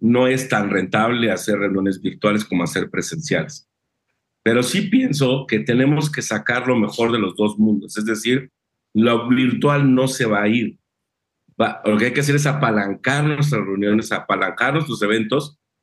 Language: Spanish